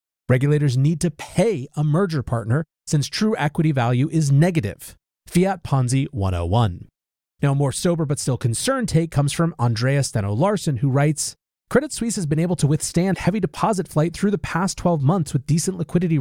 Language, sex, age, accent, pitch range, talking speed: English, male, 30-49, American, 125-185 Hz, 180 wpm